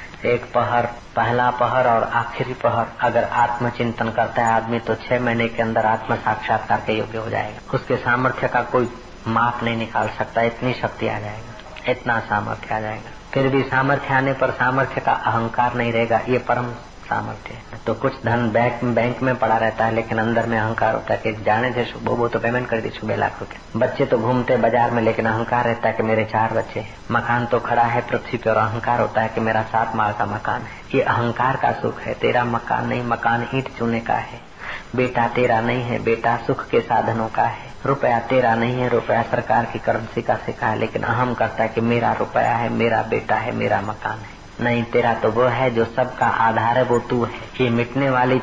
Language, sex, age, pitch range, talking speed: Hindi, female, 30-49, 115-125 Hz, 165 wpm